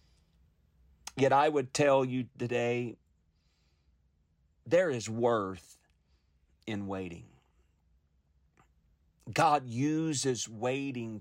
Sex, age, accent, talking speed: male, 40-59, American, 75 wpm